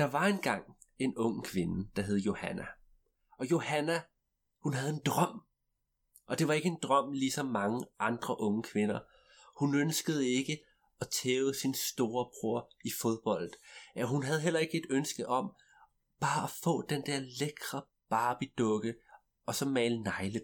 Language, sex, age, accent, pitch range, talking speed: Danish, male, 30-49, native, 115-155 Hz, 160 wpm